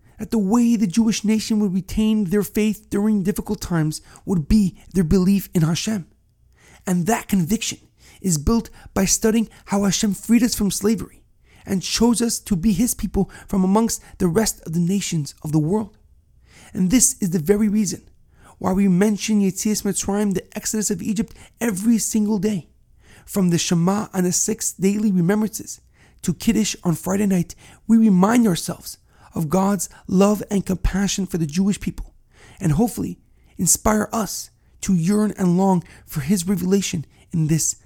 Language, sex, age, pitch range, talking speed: English, male, 40-59, 170-215 Hz, 165 wpm